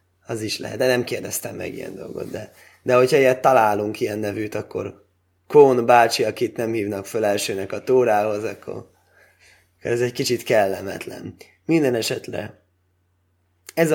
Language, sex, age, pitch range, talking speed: Hungarian, male, 20-39, 90-130 Hz, 145 wpm